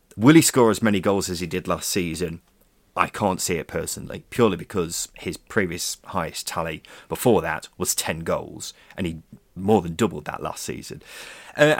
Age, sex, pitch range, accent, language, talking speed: 30-49, male, 90-135 Hz, British, English, 185 wpm